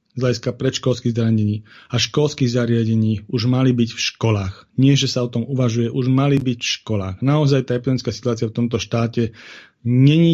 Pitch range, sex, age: 115-130 Hz, male, 40-59